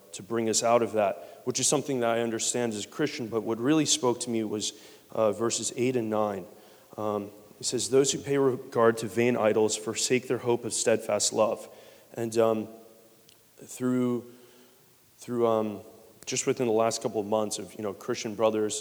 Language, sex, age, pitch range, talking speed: English, male, 30-49, 105-120 Hz, 190 wpm